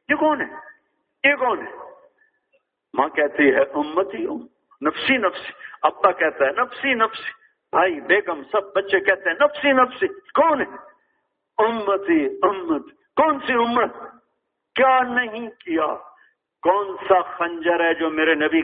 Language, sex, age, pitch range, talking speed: English, male, 50-69, 170-220 Hz, 120 wpm